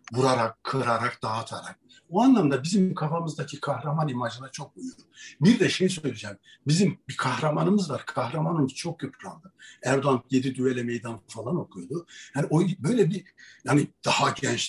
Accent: native